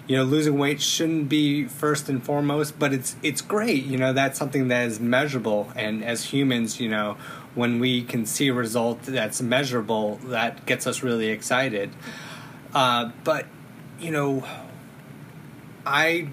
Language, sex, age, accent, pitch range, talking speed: English, male, 30-49, American, 115-145 Hz, 160 wpm